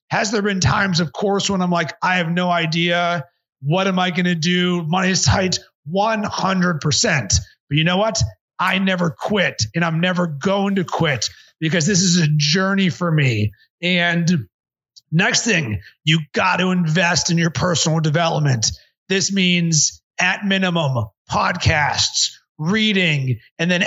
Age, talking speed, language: 30-49, 155 wpm, English